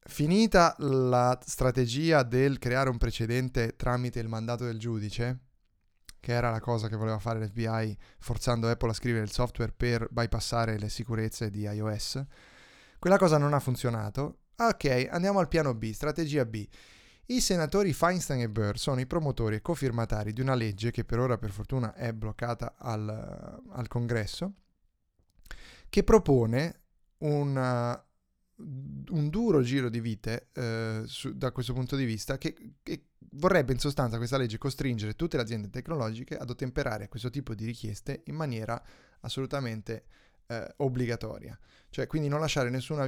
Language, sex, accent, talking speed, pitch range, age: Italian, male, native, 150 wpm, 115-140 Hz, 30-49